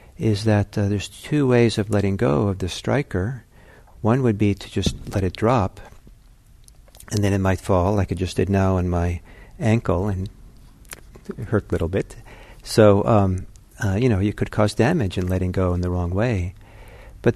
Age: 50-69